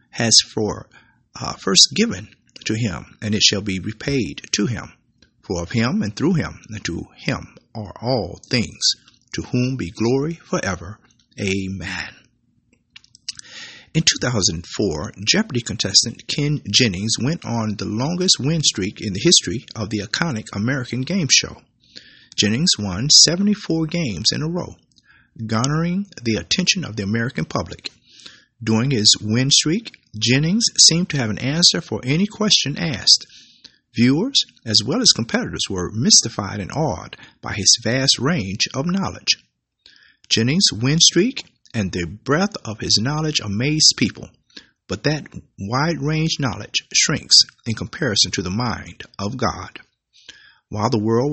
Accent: American